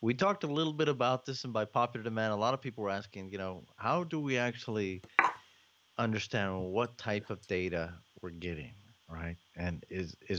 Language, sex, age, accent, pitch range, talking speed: English, male, 30-49, American, 95-120 Hz, 190 wpm